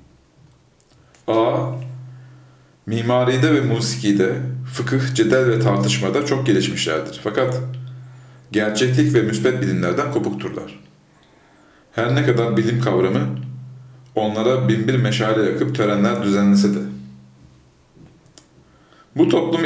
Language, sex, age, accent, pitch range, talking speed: Turkish, male, 40-59, native, 100-130 Hz, 90 wpm